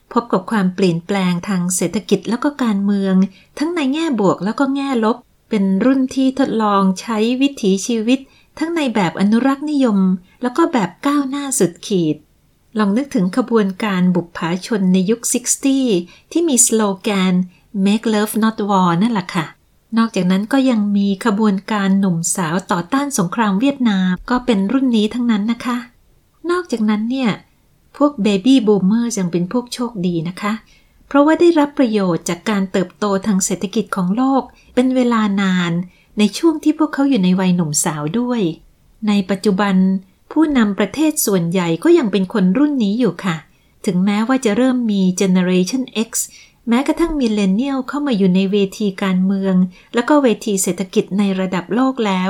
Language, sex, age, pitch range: Thai, female, 30-49, 190-250 Hz